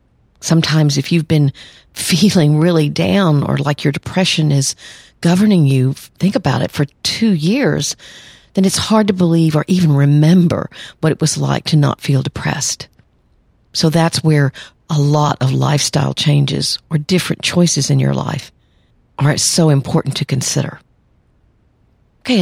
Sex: female